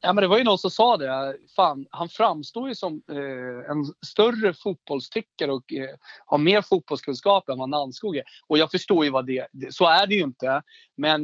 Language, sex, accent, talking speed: Swedish, male, native, 210 wpm